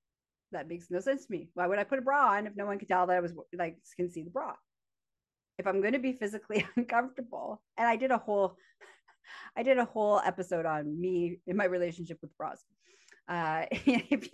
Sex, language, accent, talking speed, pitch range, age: female, English, American, 215 wpm, 170-230 Hz, 30-49